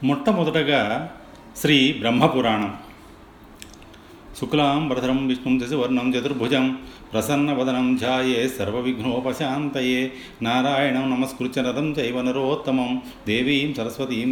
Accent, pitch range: native, 115-145 Hz